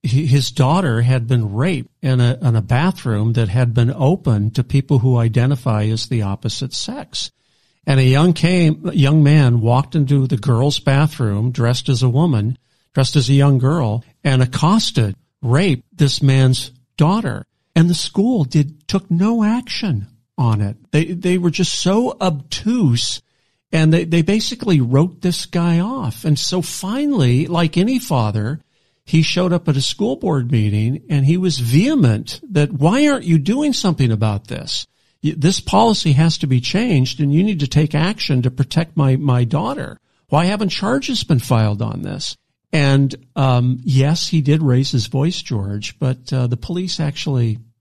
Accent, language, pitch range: American, English, 125-165 Hz